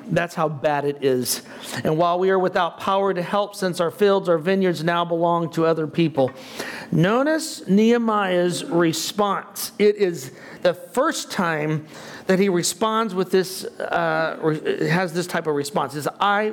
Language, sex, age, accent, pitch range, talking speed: English, male, 40-59, American, 165-210 Hz, 160 wpm